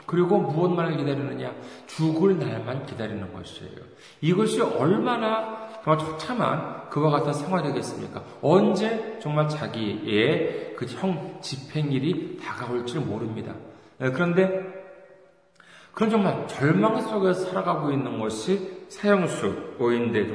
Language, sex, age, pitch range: Korean, male, 40-59, 135-190 Hz